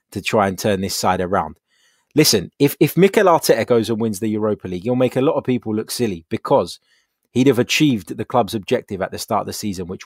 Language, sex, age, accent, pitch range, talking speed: English, male, 20-39, British, 105-140 Hz, 240 wpm